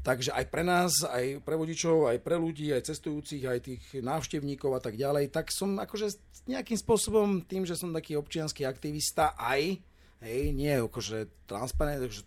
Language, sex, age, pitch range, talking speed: Slovak, male, 40-59, 105-160 Hz, 170 wpm